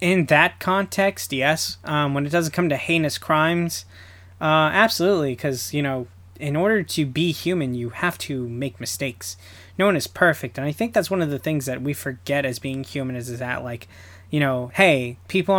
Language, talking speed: English, 205 wpm